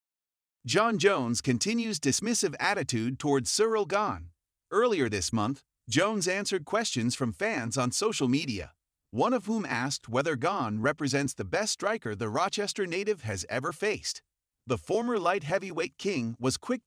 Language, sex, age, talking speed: English, male, 40-59, 150 wpm